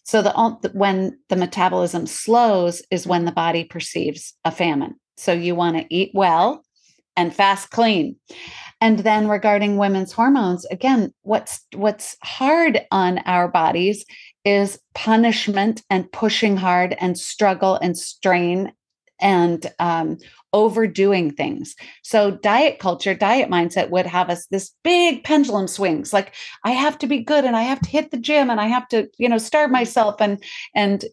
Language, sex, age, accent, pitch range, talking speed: English, female, 40-59, American, 180-235 Hz, 160 wpm